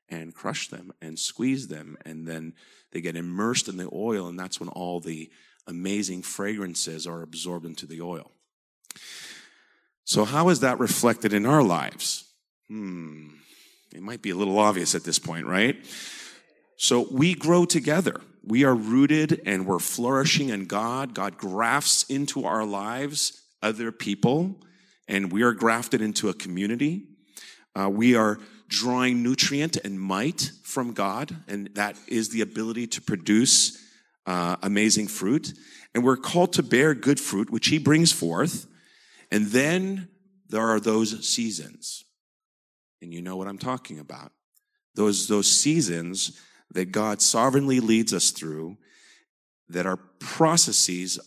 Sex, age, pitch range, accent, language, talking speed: male, 40-59, 90-135 Hz, American, English, 150 wpm